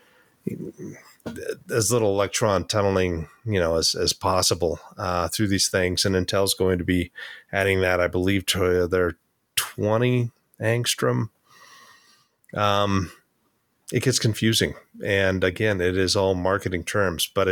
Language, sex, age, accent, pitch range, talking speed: English, male, 30-49, American, 90-110 Hz, 130 wpm